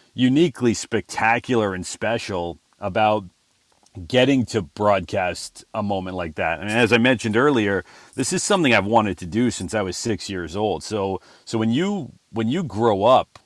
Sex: male